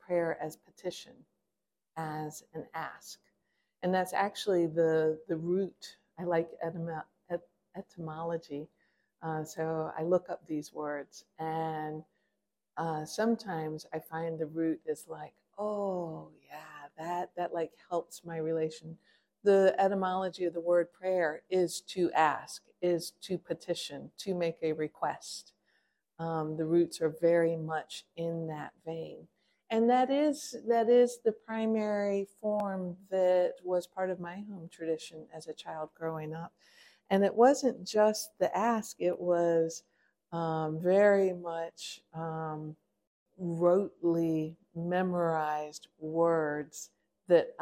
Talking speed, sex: 125 wpm, female